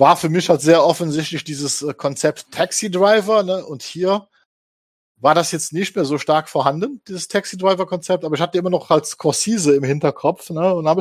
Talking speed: 185 wpm